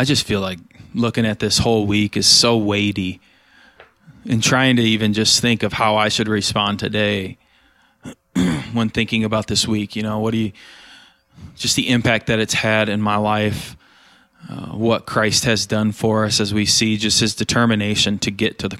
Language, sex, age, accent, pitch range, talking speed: English, male, 20-39, American, 105-115 Hz, 190 wpm